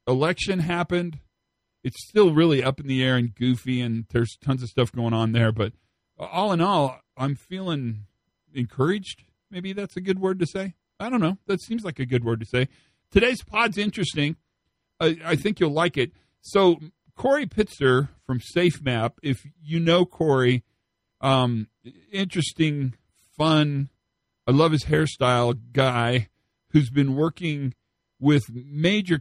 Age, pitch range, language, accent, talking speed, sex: 50-69, 120-165 Hz, English, American, 155 wpm, male